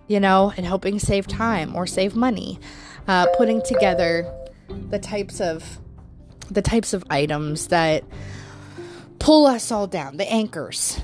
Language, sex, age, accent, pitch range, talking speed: English, female, 20-39, American, 165-215 Hz, 140 wpm